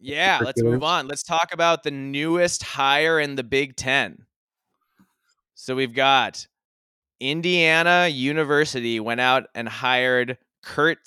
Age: 20-39